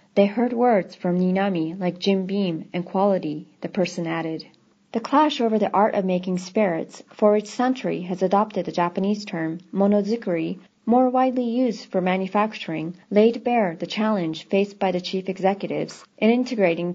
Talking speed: 165 wpm